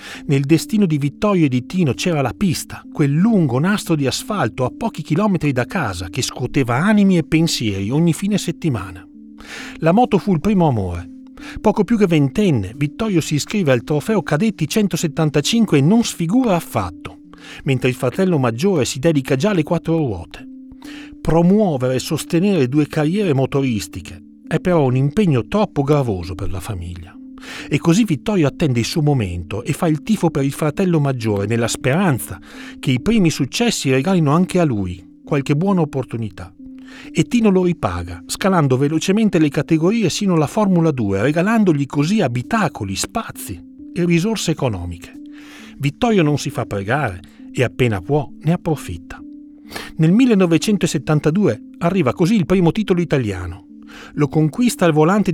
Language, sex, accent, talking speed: Italian, male, native, 155 wpm